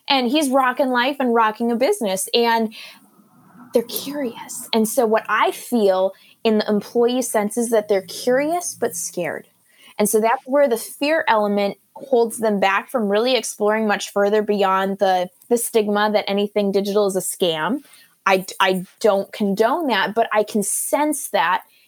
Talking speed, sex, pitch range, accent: 165 wpm, female, 195-240 Hz, American